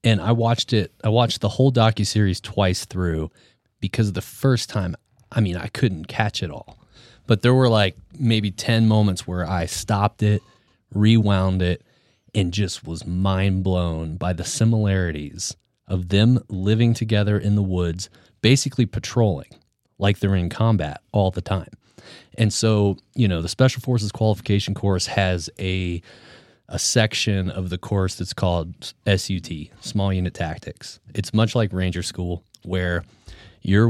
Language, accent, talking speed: English, American, 160 wpm